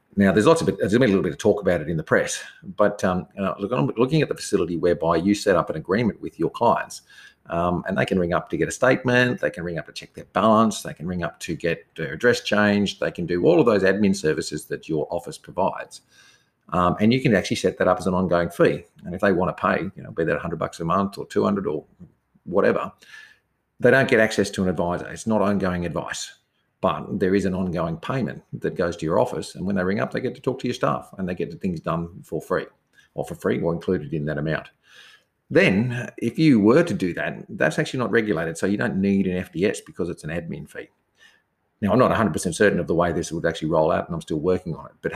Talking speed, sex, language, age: 260 wpm, male, English, 50-69